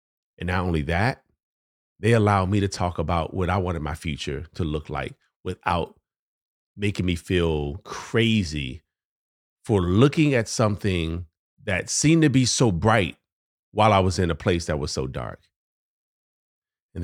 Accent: American